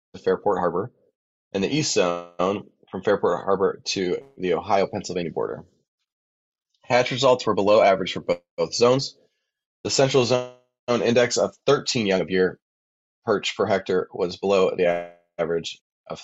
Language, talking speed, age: English, 145 wpm, 20-39